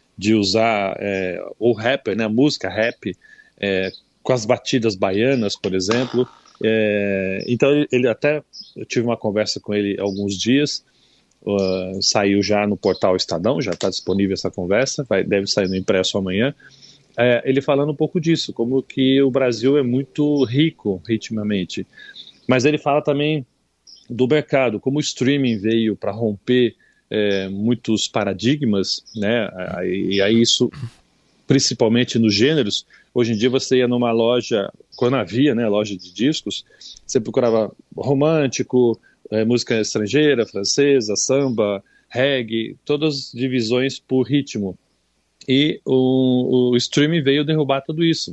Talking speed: 135 wpm